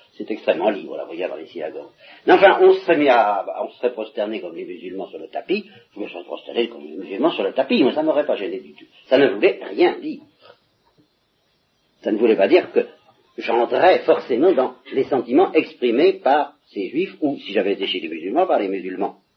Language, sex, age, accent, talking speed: French, male, 50-69, French, 220 wpm